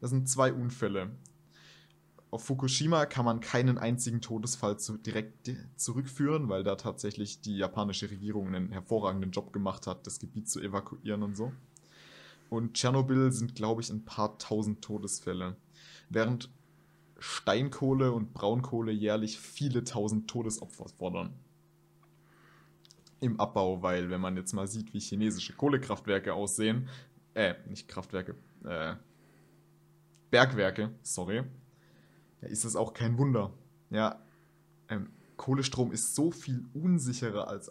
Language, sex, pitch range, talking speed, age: German, male, 105-130 Hz, 125 wpm, 20-39